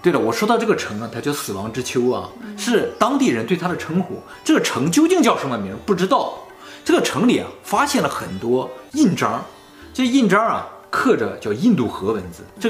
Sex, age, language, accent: male, 20-39, Chinese, native